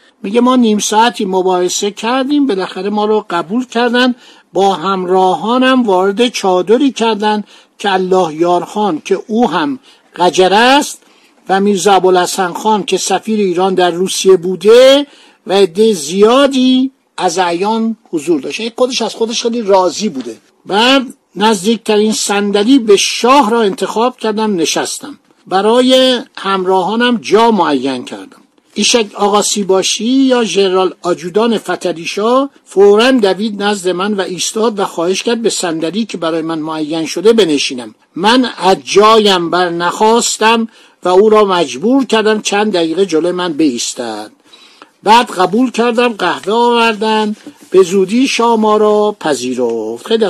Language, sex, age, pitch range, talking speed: Persian, male, 60-79, 185-235 Hz, 130 wpm